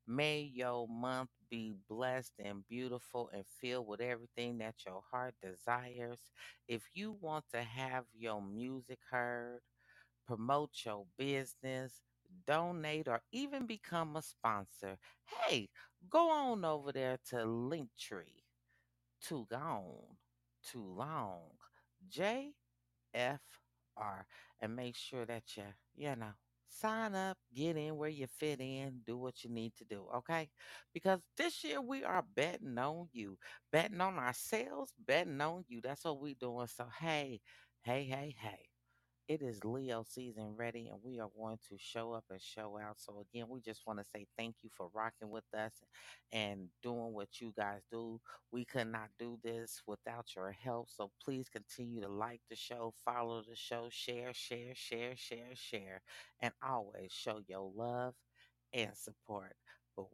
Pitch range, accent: 110-130 Hz, American